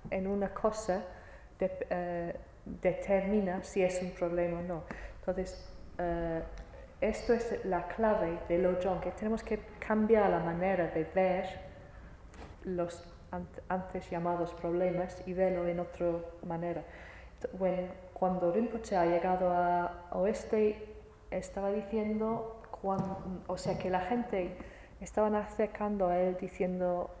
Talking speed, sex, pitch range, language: 130 wpm, female, 175-205 Hz, Italian